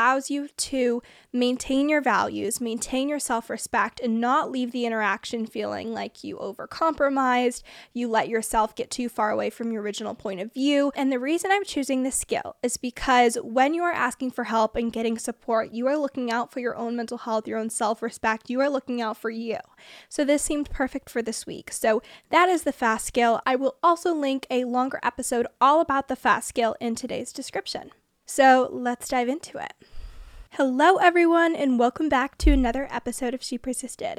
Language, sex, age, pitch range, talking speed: English, female, 10-29, 235-275 Hz, 195 wpm